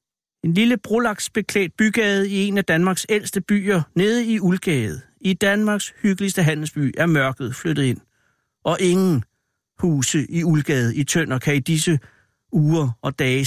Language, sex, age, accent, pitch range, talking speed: Danish, male, 60-79, native, 135-195 Hz, 150 wpm